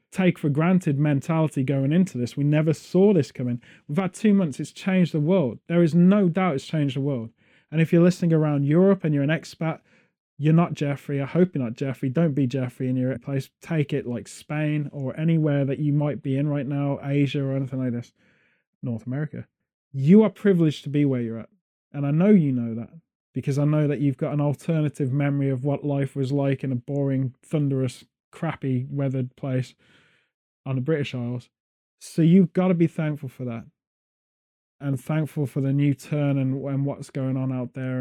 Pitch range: 130-160 Hz